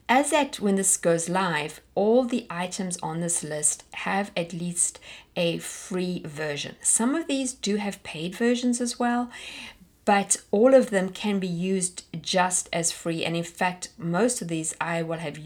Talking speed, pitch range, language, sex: 180 wpm, 165-200 Hz, English, female